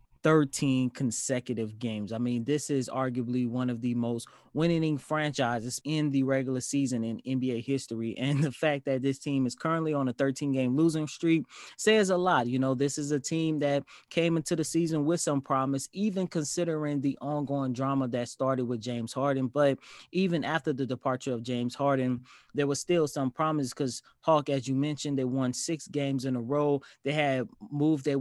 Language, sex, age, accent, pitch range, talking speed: English, male, 20-39, American, 130-160 Hz, 190 wpm